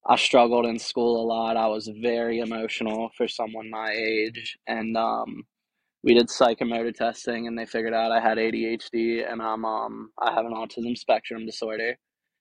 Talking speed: 170 wpm